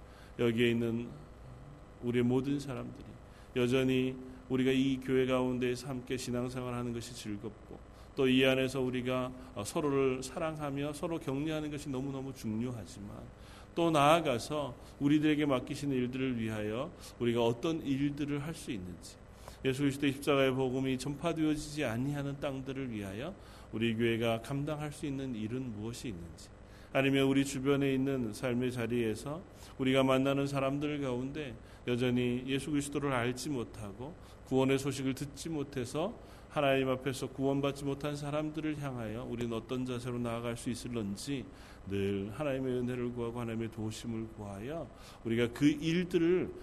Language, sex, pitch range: Korean, male, 110-135 Hz